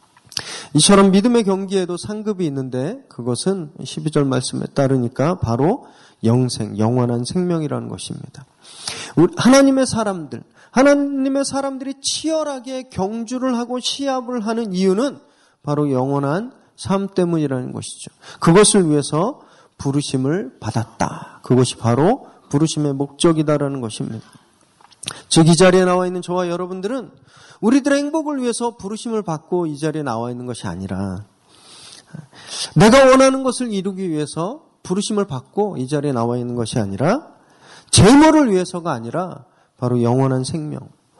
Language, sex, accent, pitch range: Korean, male, native, 135-210 Hz